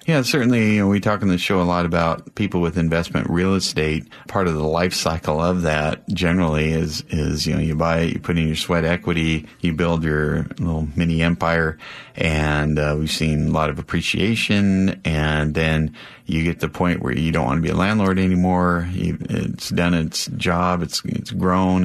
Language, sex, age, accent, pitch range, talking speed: English, male, 30-49, American, 80-90 Hz, 200 wpm